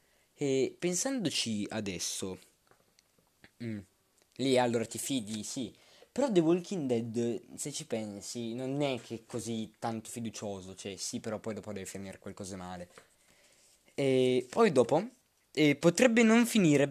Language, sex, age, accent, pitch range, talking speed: Italian, male, 20-39, native, 100-130 Hz, 140 wpm